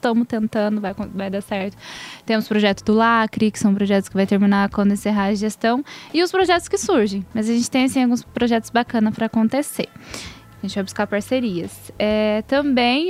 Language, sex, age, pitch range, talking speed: Portuguese, female, 10-29, 215-245 Hz, 190 wpm